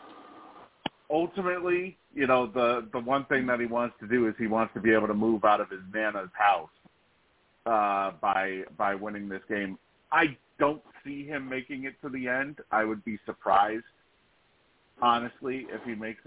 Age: 40-59